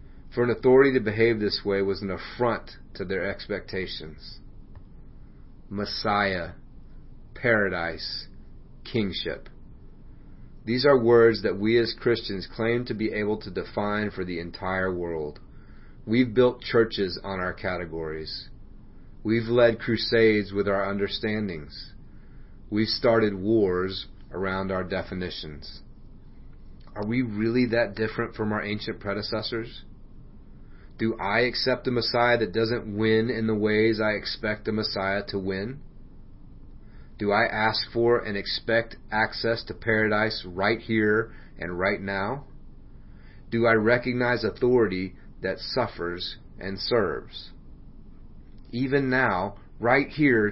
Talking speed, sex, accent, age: 120 wpm, male, American, 30-49